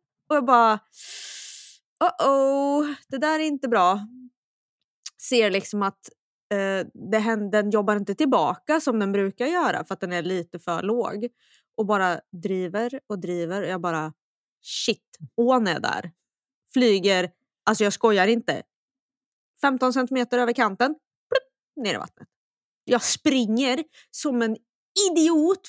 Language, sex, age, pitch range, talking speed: Swedish, female, 20-39, 210-300 Hz, 140 wpm